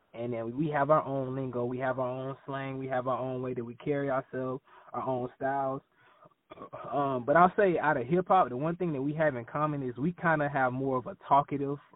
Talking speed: 245 wpm